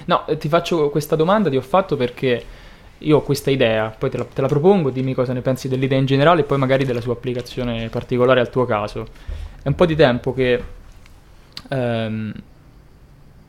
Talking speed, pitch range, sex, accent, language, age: 190 wpm, 125-150 Hz, male, native, Italian, 20-39